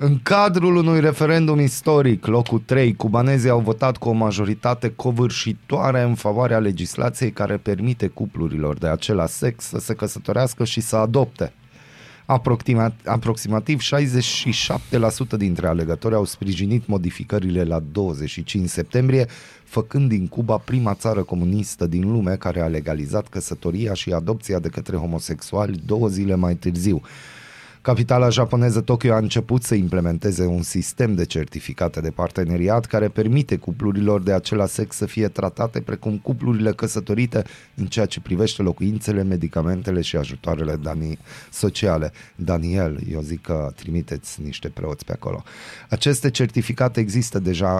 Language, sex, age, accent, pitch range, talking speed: Romanian, male, 30-49, native, 90-115 Hz, 135 wpm